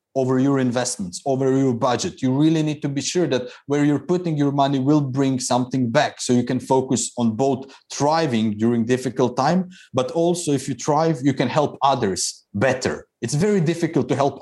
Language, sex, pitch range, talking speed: English, male, 125-160 Hz, 195 wpm